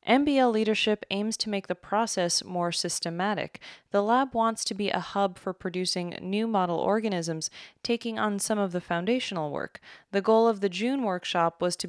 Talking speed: 180 wpm